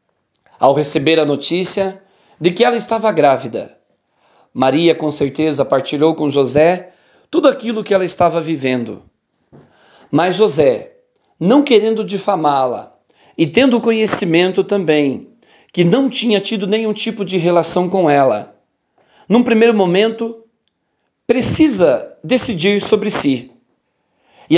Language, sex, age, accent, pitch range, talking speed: Portuguese, male, 40-59, Brazilian, 155-220 Hz, 115 wpm